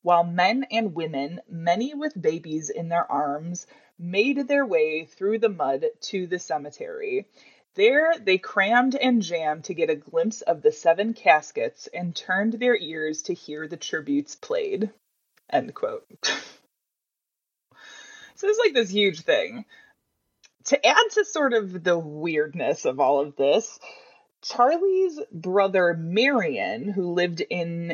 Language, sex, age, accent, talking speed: English, female, 20-39, American, 140 wpm